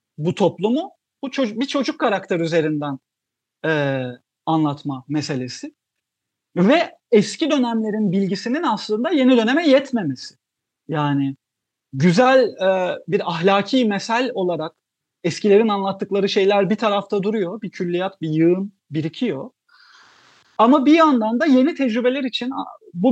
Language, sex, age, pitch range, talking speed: Turkish, male, 40-59, 160-250 Hz, 115 wpm